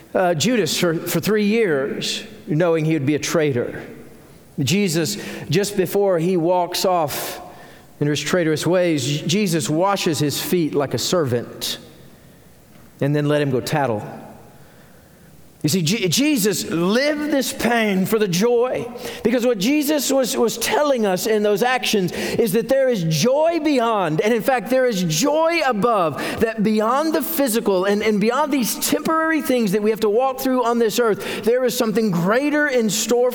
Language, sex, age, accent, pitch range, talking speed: English, male, 50-69, American, 165-230 Hz, 165 wpm